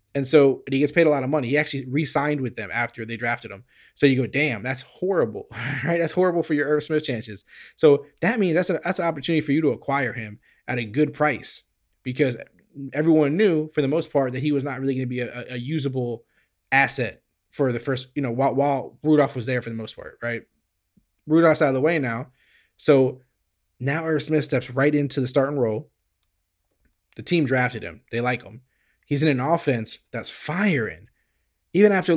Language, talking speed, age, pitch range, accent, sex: English, 210 wpm, 20-39, 125-155 Hz, American, male